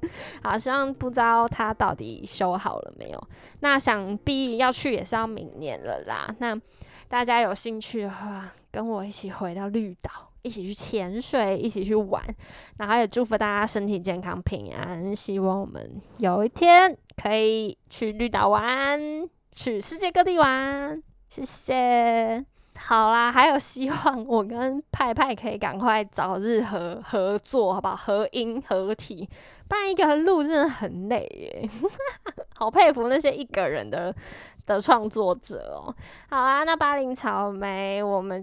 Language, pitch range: Chinese, 200-270 Hz